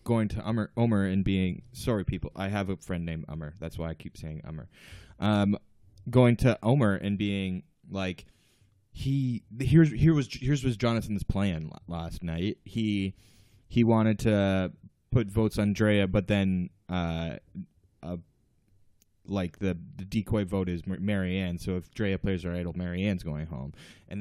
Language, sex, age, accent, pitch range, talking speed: English, male, 20-39, American, 95-125 Hz, 165 wpm